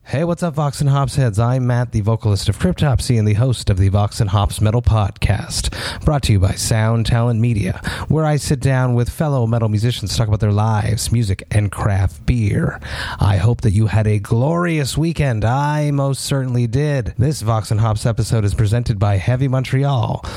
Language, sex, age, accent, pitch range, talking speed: English, male, 30-49, American, 105-125 Hz, 205 wpm